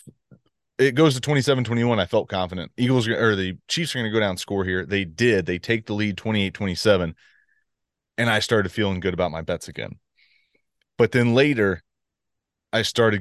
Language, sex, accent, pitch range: English, male, American, 95-115 Hz